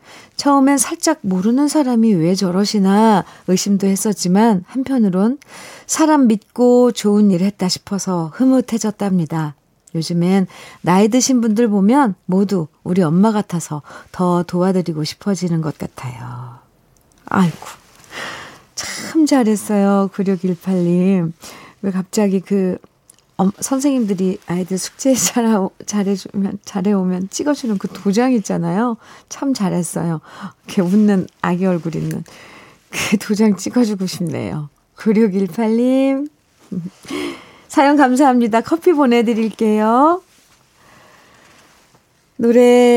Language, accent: Korean, native